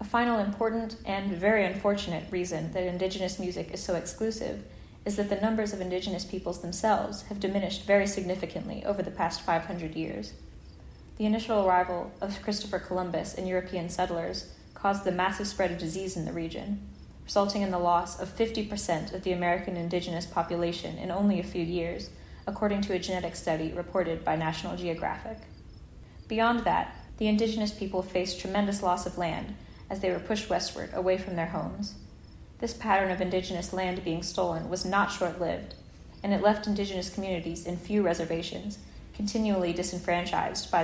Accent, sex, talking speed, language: American, female, 165 wpm, English